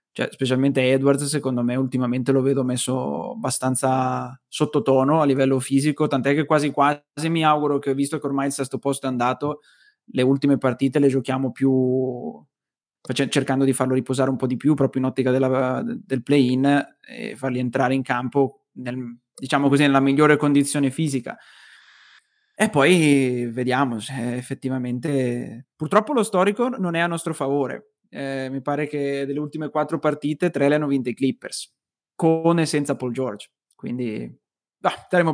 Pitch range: 130-160 Hz